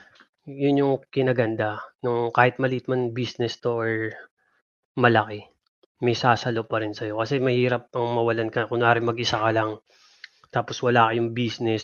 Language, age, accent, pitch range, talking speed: Filipino, 20-39, native, 110-120 Hz, 145 wpm